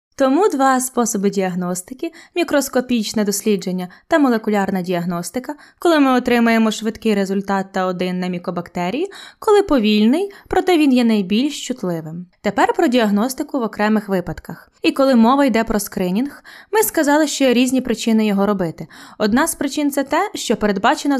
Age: 20-39